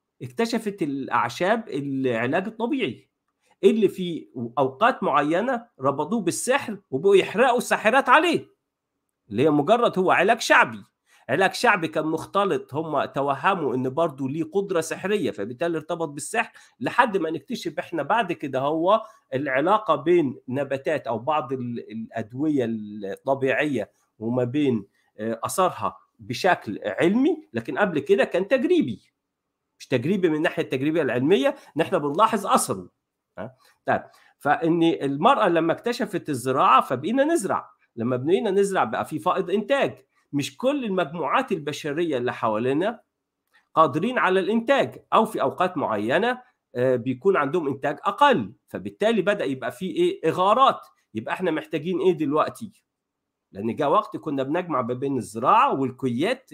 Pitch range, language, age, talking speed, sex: 135-220 Hz, Arabic, 50-69, 125 wpm, male